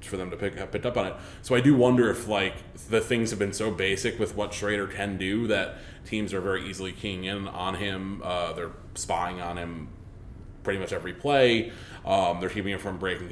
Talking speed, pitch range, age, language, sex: 225 wpm, 95-110 Hz, 20-39, English, male